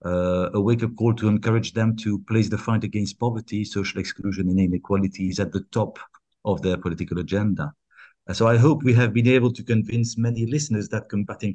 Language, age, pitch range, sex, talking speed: English, 50-69, 95-115 Hz, male, 195 wpm